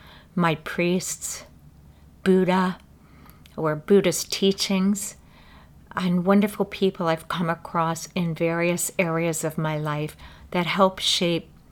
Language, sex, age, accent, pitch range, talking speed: English, female, 50-69, American, 150-190 Hz, 110 wpm